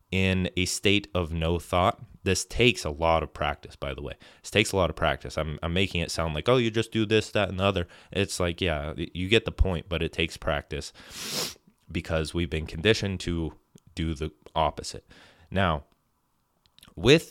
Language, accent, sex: English, American, male